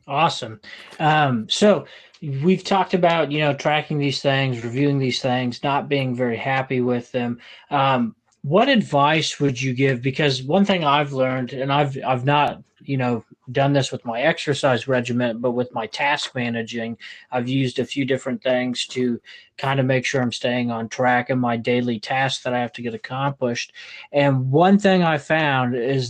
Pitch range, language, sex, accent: 125-145 Hz, English, male, American